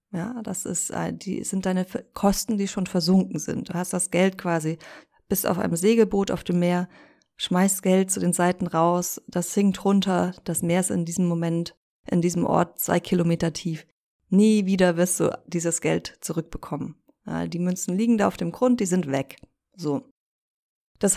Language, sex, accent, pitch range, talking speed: German, female, German, 180-215 Hz, 180 wpm